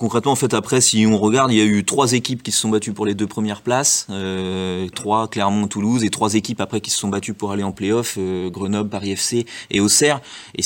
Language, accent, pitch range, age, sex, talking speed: French, French, 95-110 Hz, 30-49, male, 255 wpm